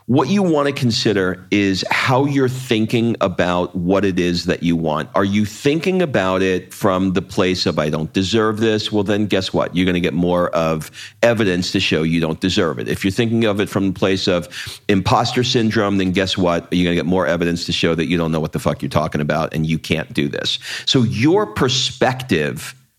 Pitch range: 90-125 Hz